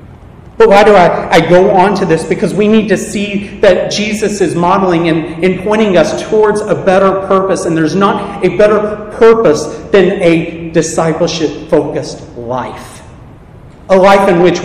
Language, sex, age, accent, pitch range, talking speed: English, male, 40-59, American, 165-205 Hz, 160 wpm